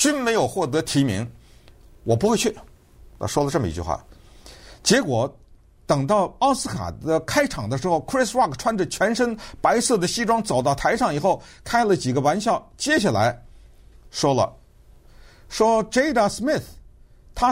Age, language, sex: 50-69, Chinese, male